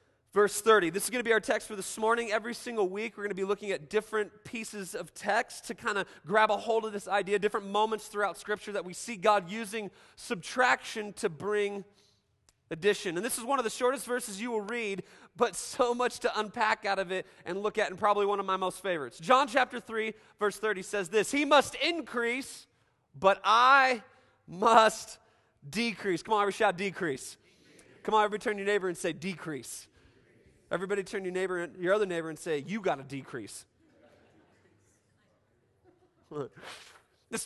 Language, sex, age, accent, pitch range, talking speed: English, male, 30-49, American, 185-225 Hz, 195 wpm